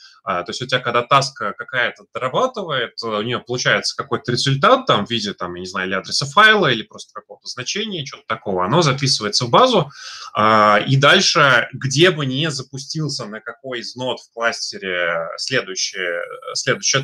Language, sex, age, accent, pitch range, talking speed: Russian, male, 20-39, native, 110-150 Hz, 160 wpm